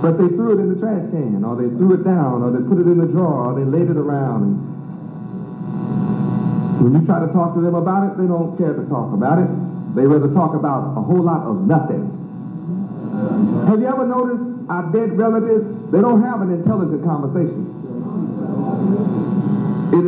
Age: 50-69